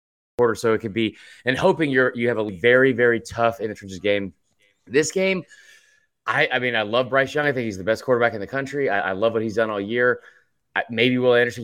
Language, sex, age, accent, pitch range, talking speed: English, male, 30-49, American, 115-165 Hz, 245 wpm